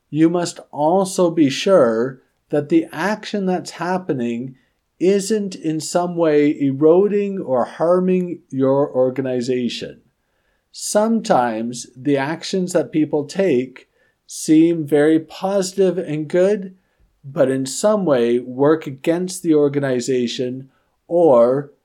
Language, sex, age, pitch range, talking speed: English, male, 50-69, 130-180 Hz, 105 wpm